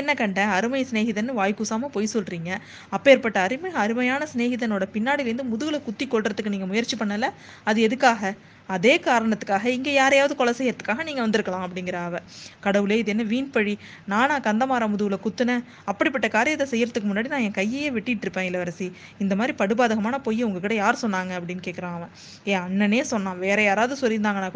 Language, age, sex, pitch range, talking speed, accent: Tamil, 20-39, female, 195-245 Hz, 150 wpm, native